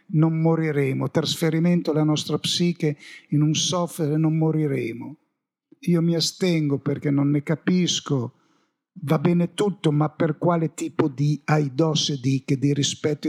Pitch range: 150-185 Hz